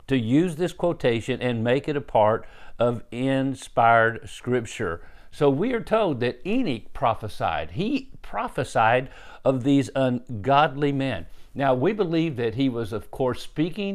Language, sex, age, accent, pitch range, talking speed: English, male, 50-69, American, 120-155 Hz, 145 wpm